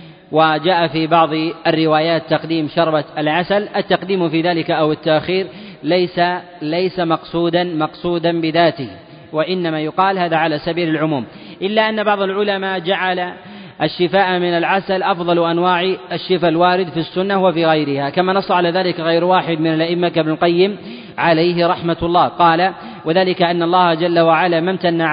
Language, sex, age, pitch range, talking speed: Arabic, male, 30-49, 160-180 Hz, 140 wpm